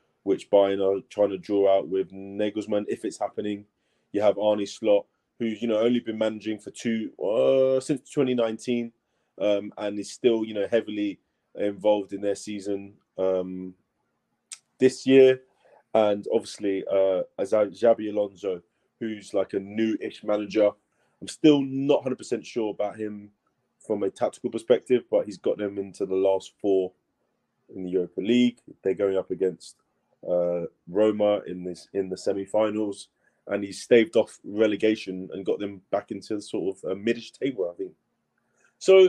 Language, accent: English, British